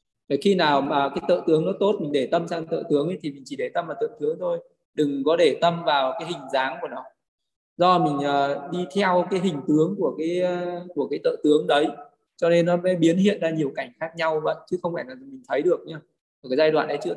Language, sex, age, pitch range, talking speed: Vietnamese, male, 20-39, 145-195 Hz, 265 wpm